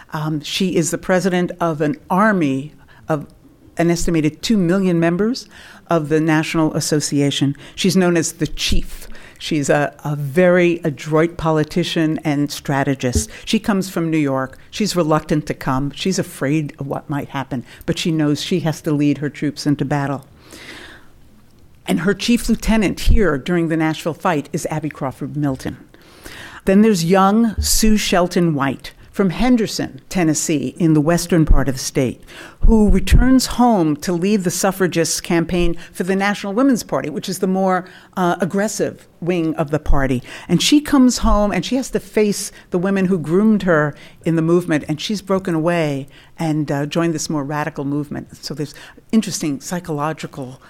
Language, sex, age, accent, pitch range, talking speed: English, female, 50-69, American, 150-190 Hz, 165 wpm